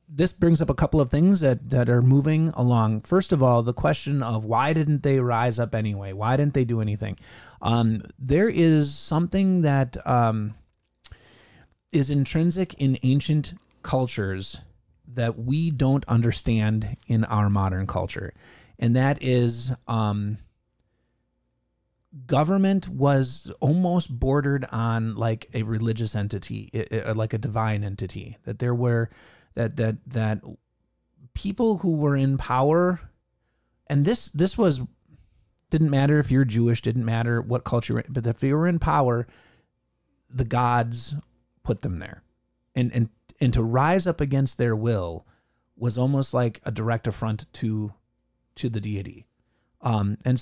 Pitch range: 110-140 Hz